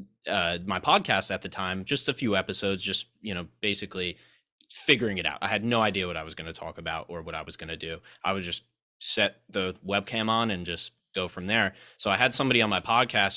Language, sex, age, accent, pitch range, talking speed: English, male, 20-39, American, 95-110 Hz, 240 wpm